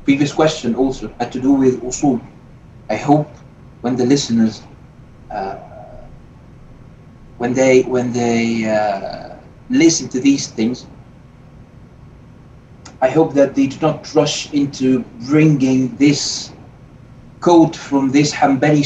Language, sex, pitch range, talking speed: English, male, 125-150 Hz, 120 wpm